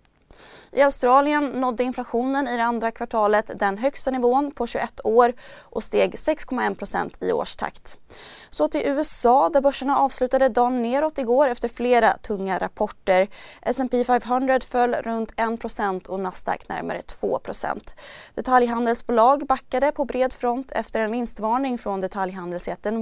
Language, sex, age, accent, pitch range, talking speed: Swedish, female, 20-39, native, 210-265 Hz, 135 wpm